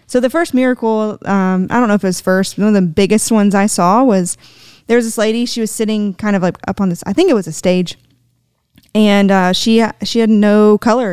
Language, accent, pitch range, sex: English, American, 180-225 Hz, female